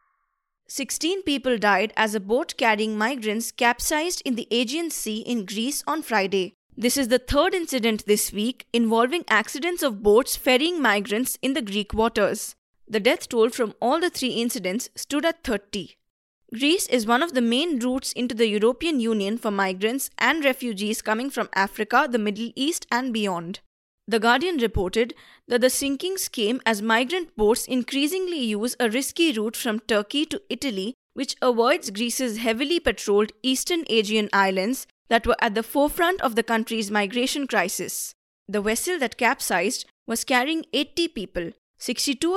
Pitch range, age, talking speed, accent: 220-280 Hz, 20-39, 160 wpm, Indian